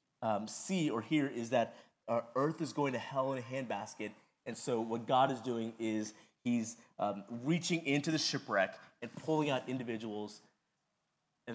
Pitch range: 120-170 Hz